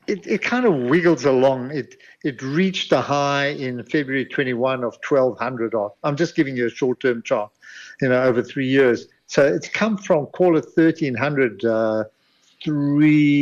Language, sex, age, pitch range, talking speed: English, male, 50-69, 120-155 Hz, 185 wpm